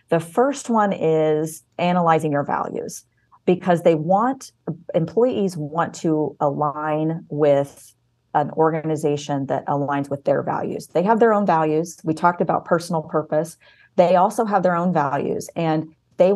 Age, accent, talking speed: 40-59, American, 145 wpm